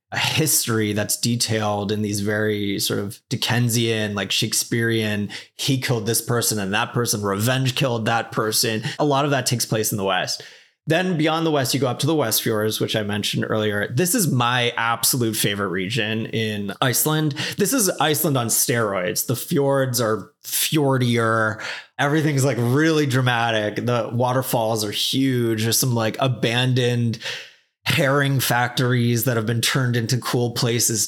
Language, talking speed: English, 165 wpm